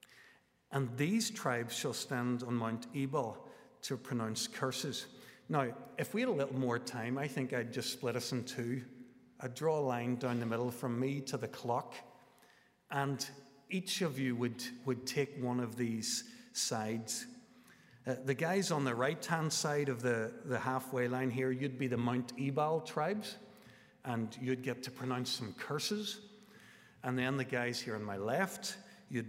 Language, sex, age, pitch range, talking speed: English, male, 50-69, 120-145 Hz, 175 wpm